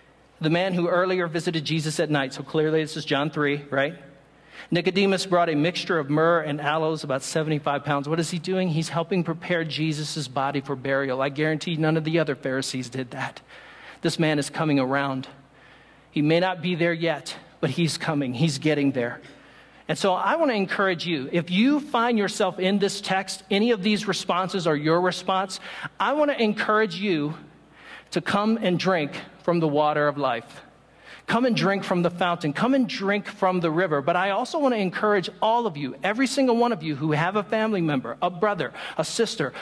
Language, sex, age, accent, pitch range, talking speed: English, male, 50-69, American, 150-190 Hz, 200 wpm